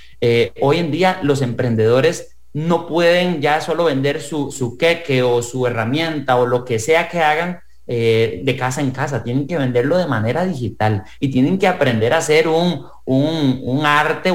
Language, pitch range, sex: English, 120-160 Hz, male